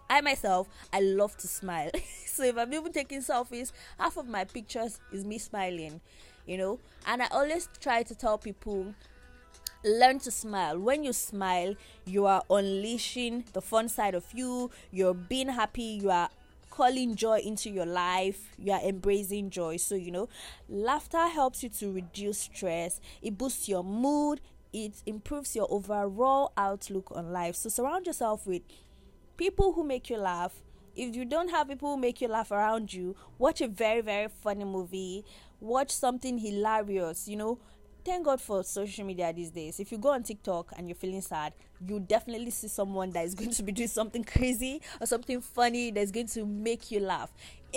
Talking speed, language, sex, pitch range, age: 180 wpm, English, female, 190-250 Hz, 20-39